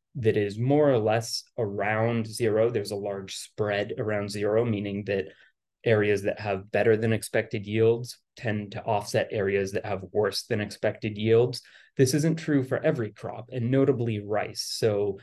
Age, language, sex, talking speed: 30-49, English, male, 165 wpm